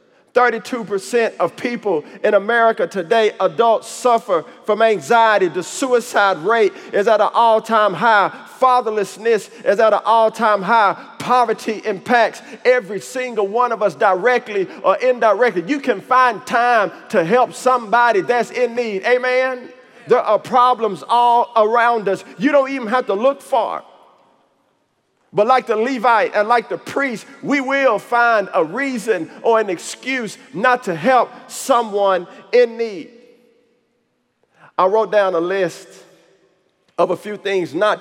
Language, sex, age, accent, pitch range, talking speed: English, male, 50-69, American, 200-250 Hz, 140 wpm